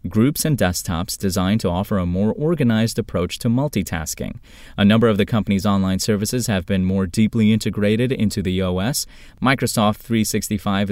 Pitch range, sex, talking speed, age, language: 95-125 Hz, male, 160 wpm, 30-49, English